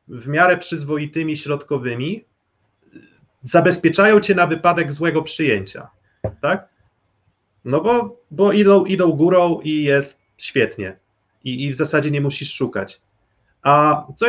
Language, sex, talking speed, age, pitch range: Polish, male, 120 wpm, 30-49, 130-160 Hz